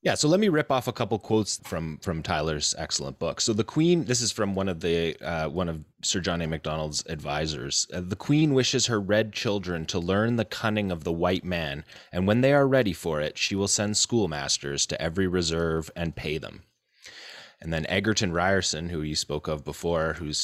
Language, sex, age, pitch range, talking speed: English, male, 30-49, 80-105 Hz, 215 wpm